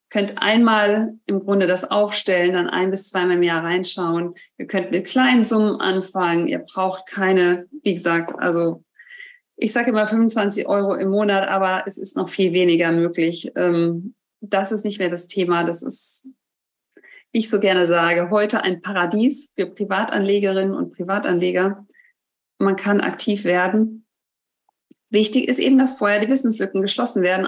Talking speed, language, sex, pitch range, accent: 155 wpm, German, female, 190-230 Hz, German